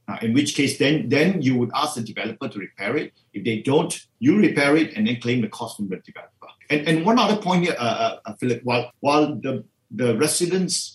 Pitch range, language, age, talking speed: 115-150 Hz, English, 50-69, 230 wpm